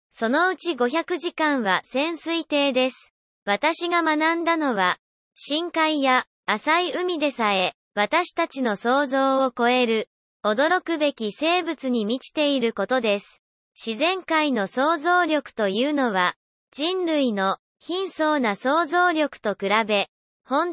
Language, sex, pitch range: Japanese, male, 235-330 Hz